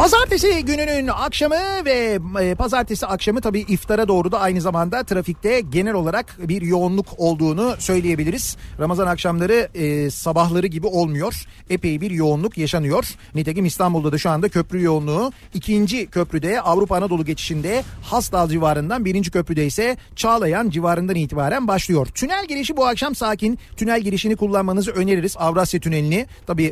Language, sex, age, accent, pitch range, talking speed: Turkish, male, 40-59, native, 170-230 Hz, 135 wpm